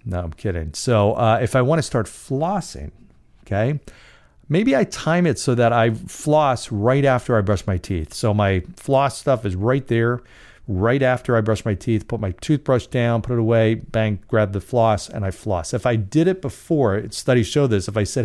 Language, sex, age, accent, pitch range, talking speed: English, male, 40-59, American, 100-130 Hz, 210 wpm